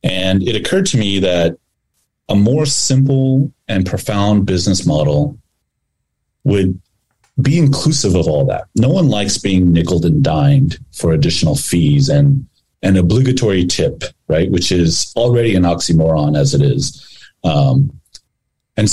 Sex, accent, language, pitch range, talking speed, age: male, American, English, 85-125 Hz, 140 wpm, 30-49